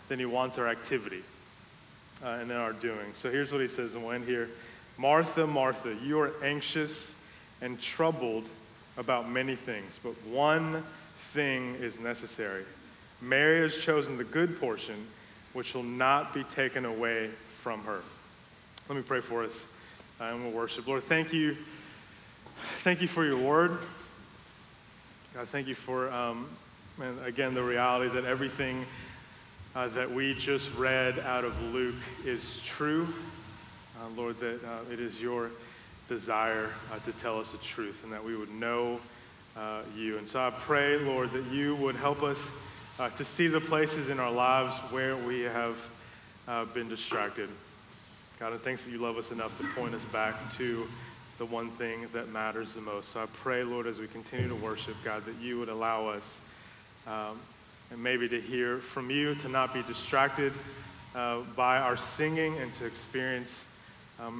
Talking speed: 170 wpm